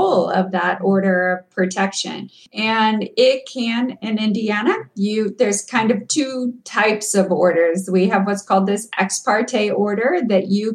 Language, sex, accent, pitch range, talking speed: English, female, American, 200-245 Hz, 155 wpm